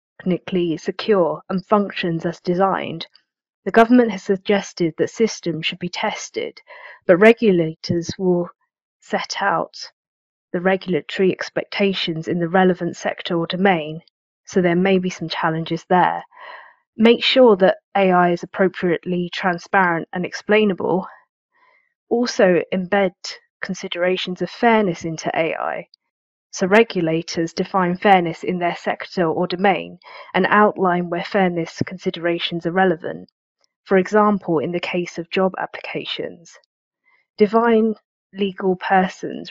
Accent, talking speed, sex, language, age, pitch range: British, 120 wpm, female, English, 30-49, 175-205 Hz